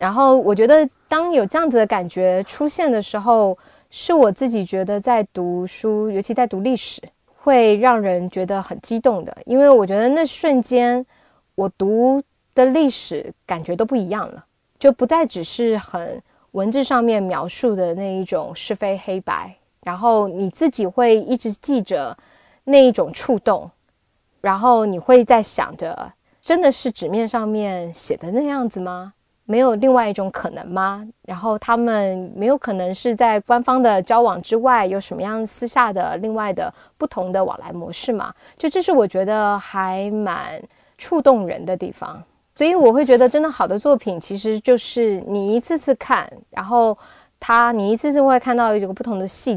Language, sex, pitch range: Chinese, female, 195-255 Hz